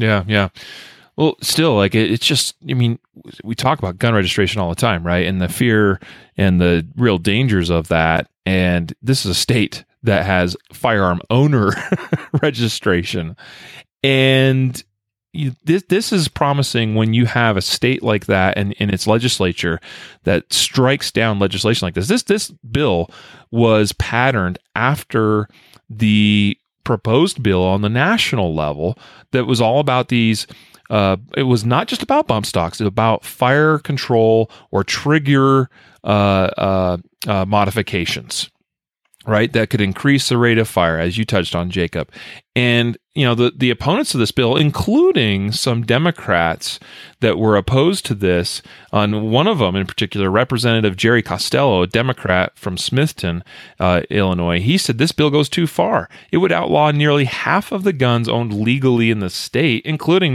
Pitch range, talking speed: 95-130 Hz, 160 wpm